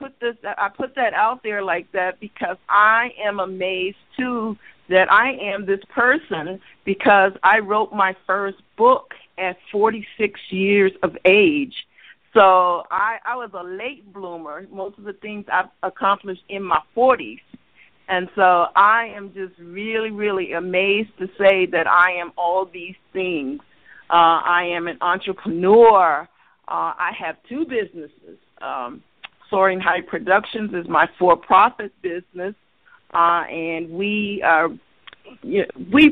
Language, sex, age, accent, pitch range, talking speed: English, female, 50-69, American, 180-220 Hz, 140 wpm